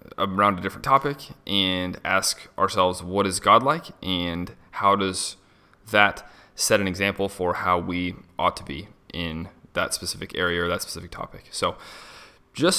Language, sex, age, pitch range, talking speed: English, male, 20-39, 90-110 Hz, 160 wpm